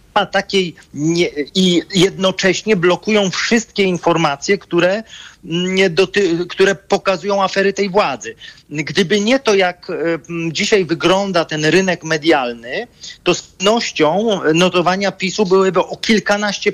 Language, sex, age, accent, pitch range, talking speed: Polish, male, 40-59, native, 165-210 Hz, 115 wpm